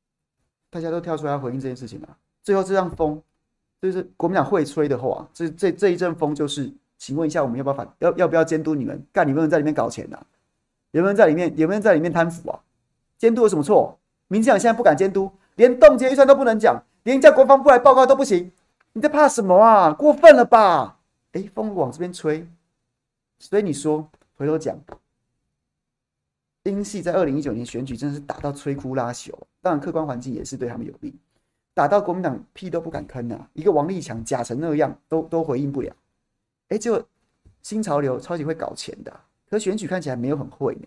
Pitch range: 145-215 Hz